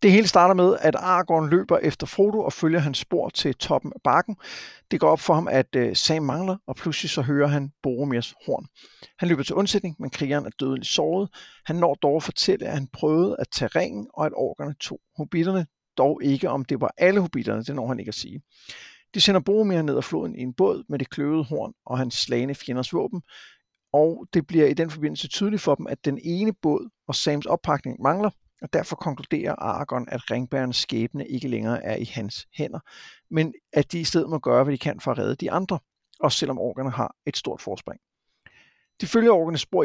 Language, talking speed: Danish, 215 wpm